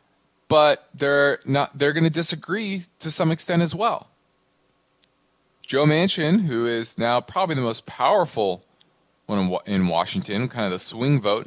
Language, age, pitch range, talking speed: English, 20-39, 115-160 Hz, 155 wpm